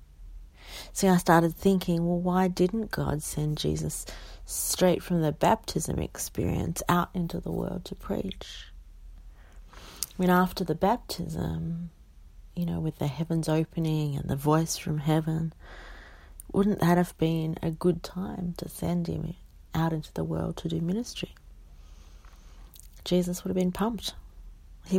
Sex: female